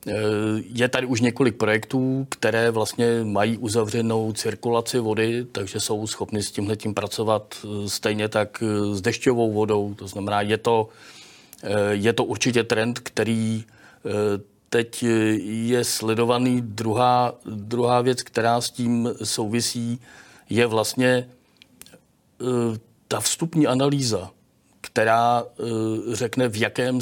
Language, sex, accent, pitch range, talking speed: Czech, male, native, 105-120 Hz, 110 wpm